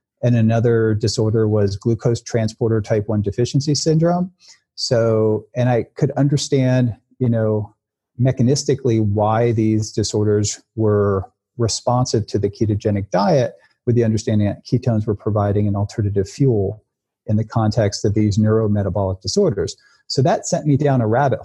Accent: American